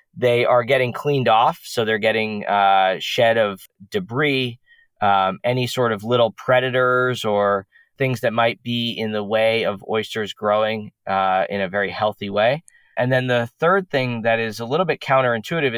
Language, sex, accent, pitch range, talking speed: English, male, American, 105-125 Hz, 175 wpm